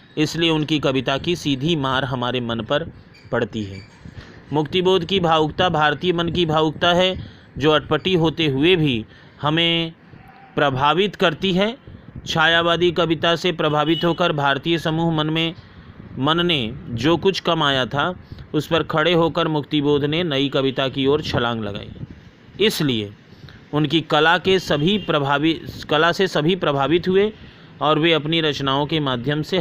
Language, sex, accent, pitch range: Hindi, male, native, 135-170 Hz